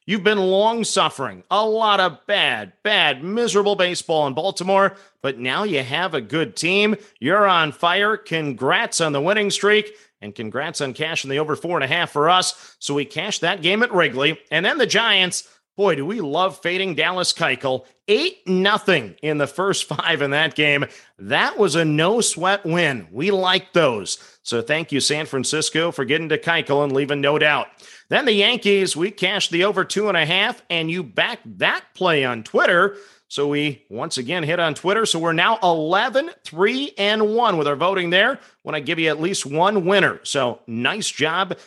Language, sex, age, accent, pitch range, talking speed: English, male, 40-59, American, 150-200 Hz, 190 wpm